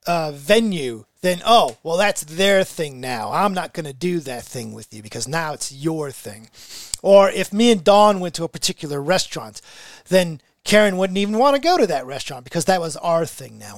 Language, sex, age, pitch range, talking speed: English, male, 40-59, 150-215 Hz, 215 wpm